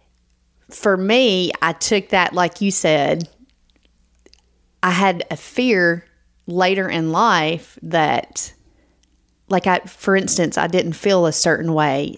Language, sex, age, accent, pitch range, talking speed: English, female, 30-49, American, 150-190 Hz, 130 wpm